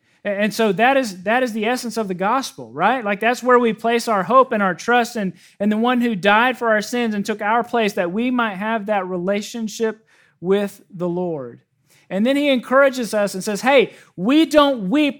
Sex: male